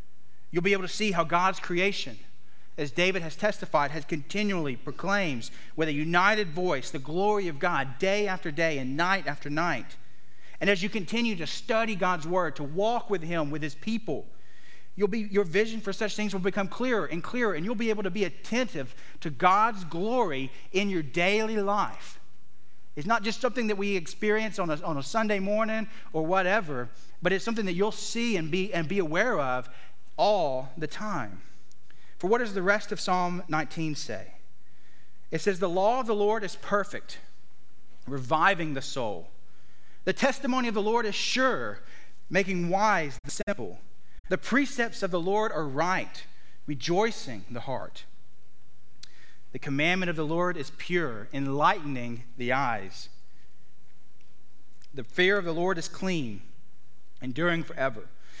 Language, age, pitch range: English, 40-59, 150-210 Hz